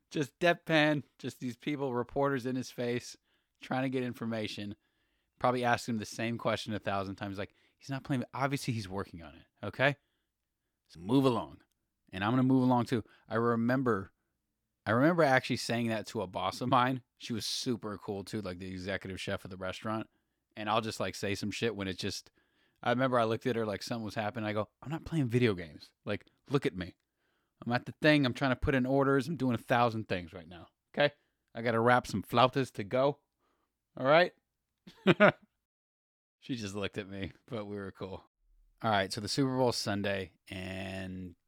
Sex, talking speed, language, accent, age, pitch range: male, 205 wpm, English, American, 20-39, 100-130 Hz